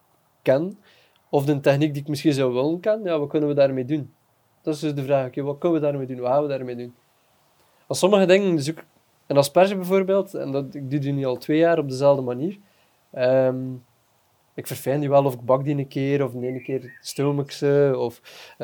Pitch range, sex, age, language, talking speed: 125-150 Hz, male, 20-39, Dutch, 225 wpm